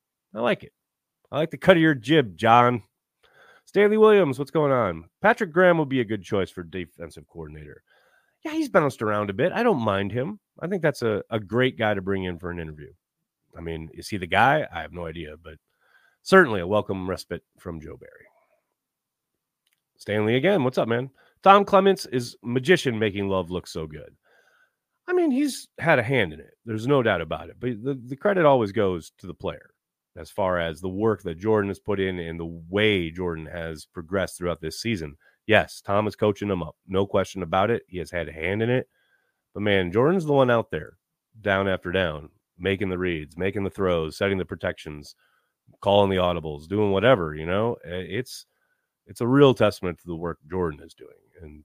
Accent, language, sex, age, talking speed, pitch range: American, English, male, 30-49, 205 wpm, 90-135 Hz